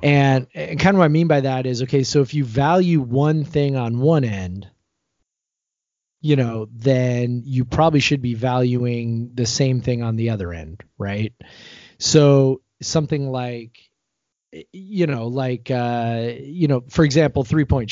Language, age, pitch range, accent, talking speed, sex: English, 30-49, 120-150 Hz, American, 160 wpm, male